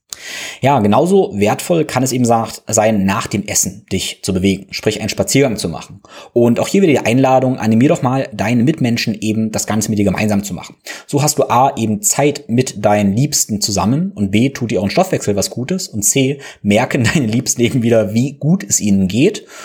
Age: 20-39